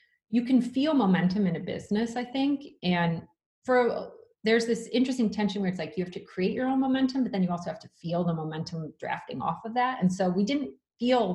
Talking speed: 225 wpm